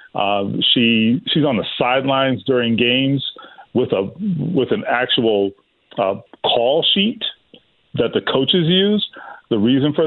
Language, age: English, 40-59